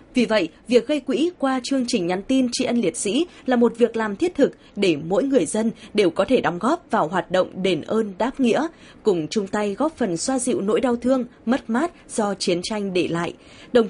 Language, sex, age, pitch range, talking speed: Vietnamese, female, 20-39, 180-240 Hz, 235 wpm